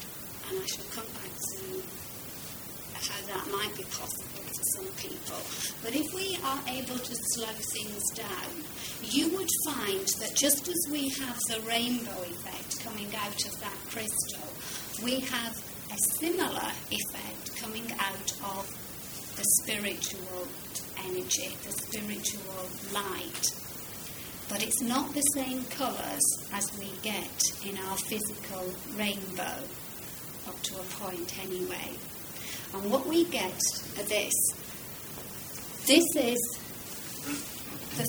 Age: 30-49